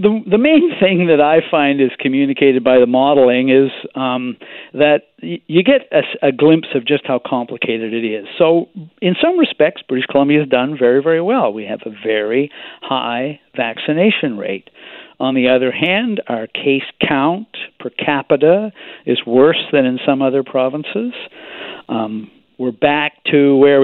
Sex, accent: male, American